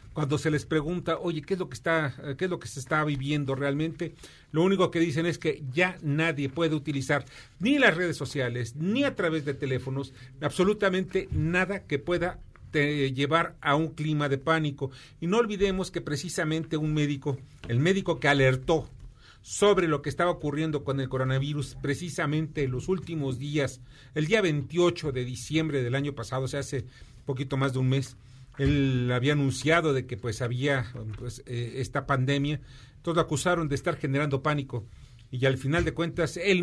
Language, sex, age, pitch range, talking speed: Spanish, male, 40-59, 130-165 Hz, 180 wpm